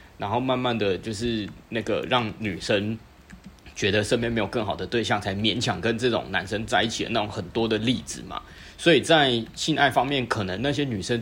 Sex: male